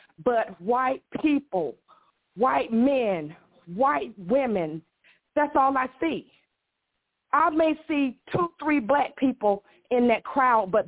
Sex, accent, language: female, American, English